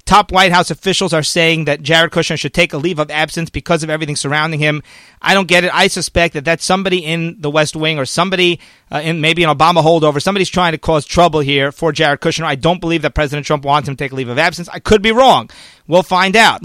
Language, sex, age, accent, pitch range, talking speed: English, male, 40-59, American, 155-200 Hz, 255 wpm